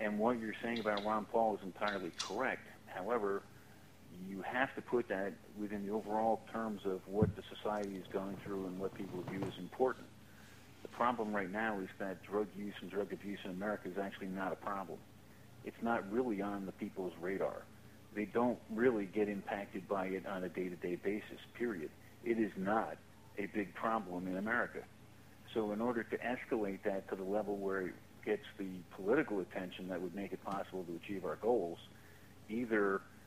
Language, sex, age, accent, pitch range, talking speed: English, male, 50-69, American, 95-110 Hz, 185 wpm